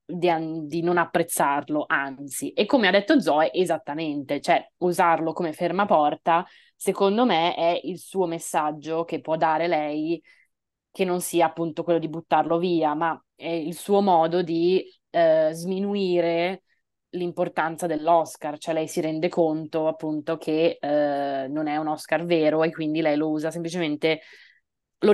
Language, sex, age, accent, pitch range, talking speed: Italian, female, 20-39, native, 150-175 Hz, 150 wpm